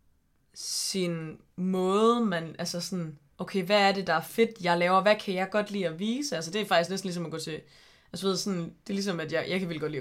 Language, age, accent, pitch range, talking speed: Danish, 20-39, native, 165-200 Hz, 260 wpm